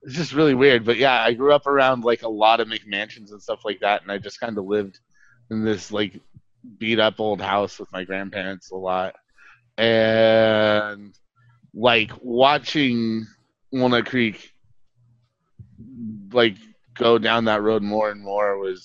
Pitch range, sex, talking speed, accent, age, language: 100-120 Hz, male, 160 wpm, American, 30-49, English